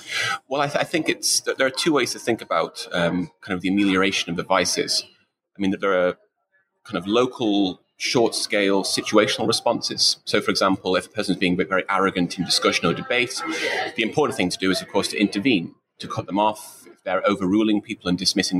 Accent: British